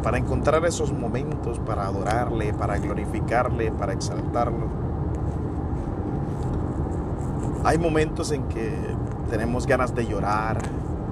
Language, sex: Spanish, male